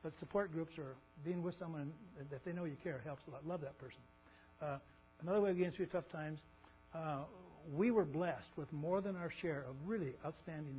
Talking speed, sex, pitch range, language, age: 210 wpm, male, 140-175 Hz, English, 60-79